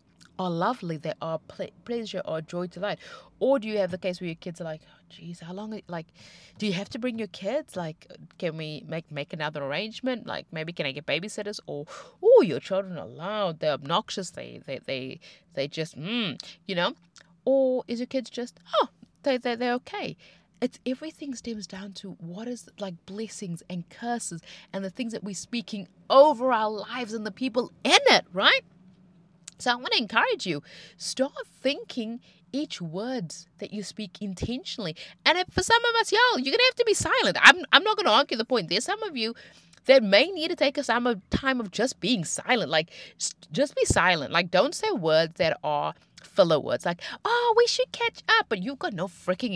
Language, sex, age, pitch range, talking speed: English, female, 30-49, 175-255 Hz, 205 wpm